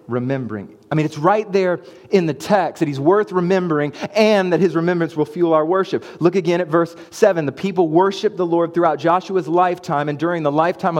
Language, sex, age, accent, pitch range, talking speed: English, male, 30-49, American, 170-205 Hz, 205 wpm